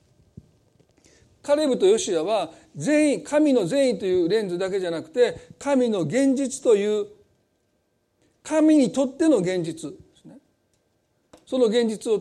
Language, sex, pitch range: Japanese, male, 200-280 Hz